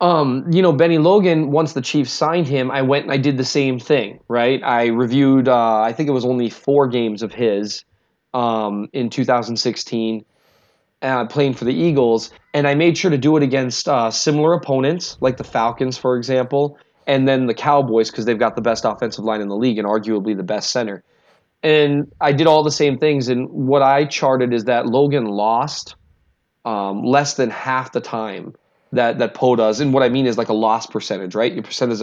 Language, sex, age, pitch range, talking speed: English, male, 20-39, 115-145 Hz, 210 wpm